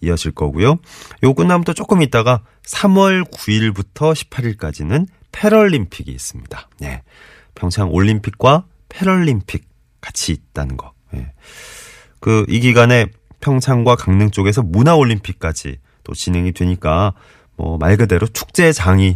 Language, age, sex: Korean, 30-49, male